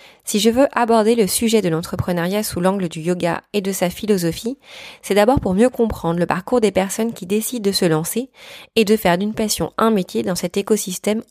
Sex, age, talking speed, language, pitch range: female, 20-39, 210 wpm, French, 185-225 Hz